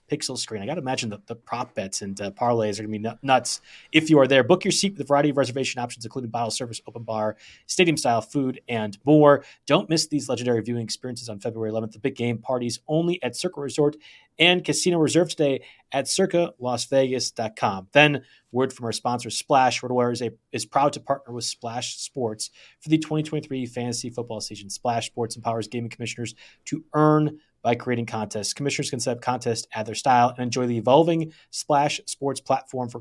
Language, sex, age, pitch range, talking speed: English, male, 30-49, 115-145 Hz, 205 wpm